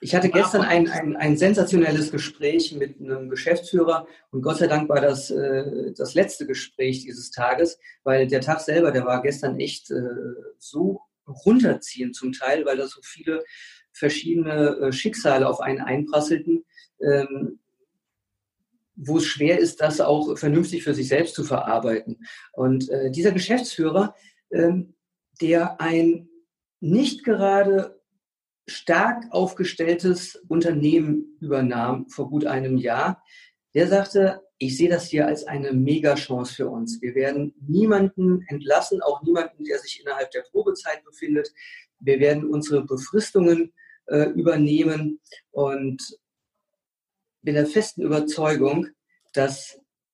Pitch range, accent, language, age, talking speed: 140-185 Hz, German, German, 50-69, 130 wpm